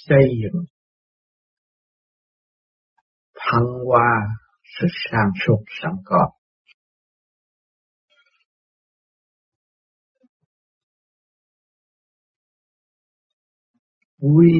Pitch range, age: 115-165 Hz, 60-79